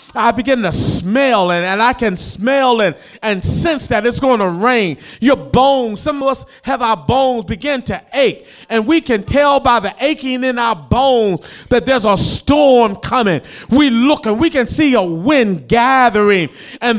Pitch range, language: 210-275 Hz, English